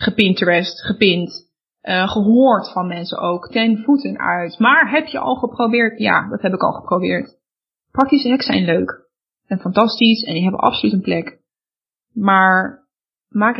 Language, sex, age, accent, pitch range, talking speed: Dutch, female, 20-39, Dutch, 205-255 Hz, 155 wpm